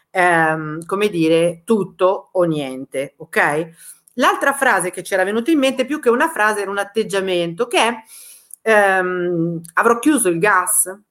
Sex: female